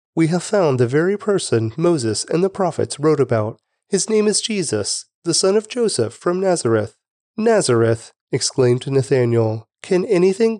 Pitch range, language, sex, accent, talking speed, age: 115-175 Hz, English, male, American, 155 wpm, 30-49